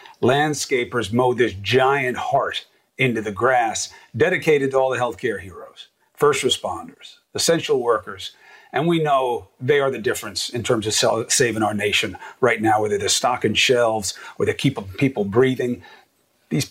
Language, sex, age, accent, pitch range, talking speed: English, male, 40-59, American, 110-155 Hz, 155 wpm